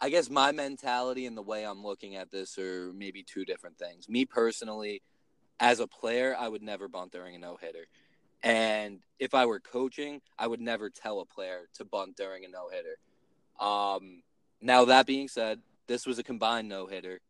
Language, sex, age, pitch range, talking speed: English, male, 20-39, 100-125 Hz, 185 wpm